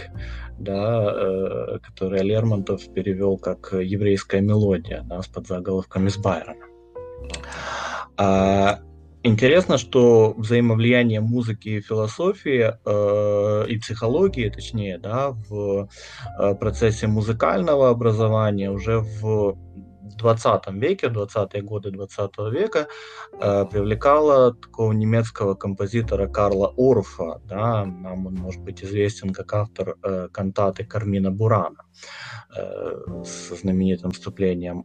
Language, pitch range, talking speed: Russian, 95-115 Hz, 100 wpm